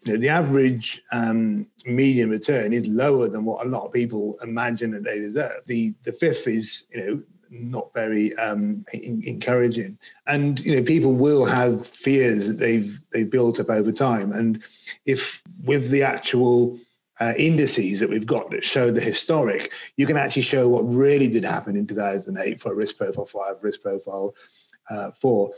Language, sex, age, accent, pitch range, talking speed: English, male, 30-49, British, 110-130 Hz, 190 wpm